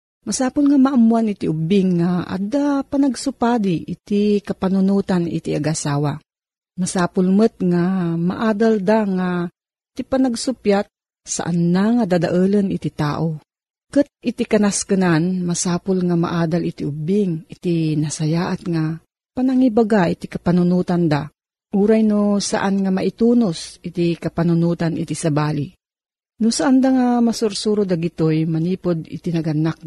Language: Filipino